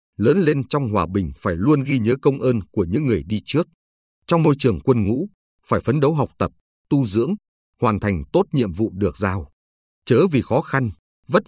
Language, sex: Vietnamese, male